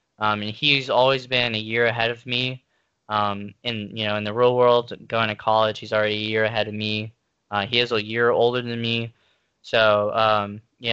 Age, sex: 10-29, male